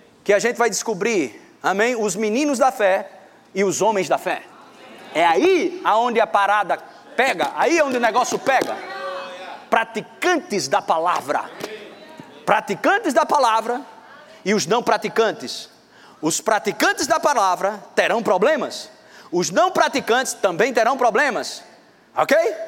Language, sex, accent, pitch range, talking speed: Portuguese, male, Brazilian, 230-330 Hz, 130 wpm